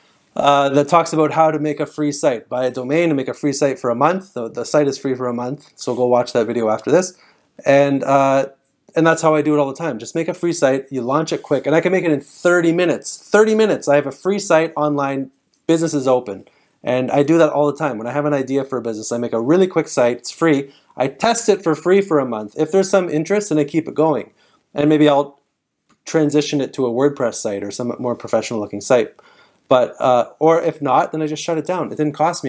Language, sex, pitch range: English, male, 130-165 Hz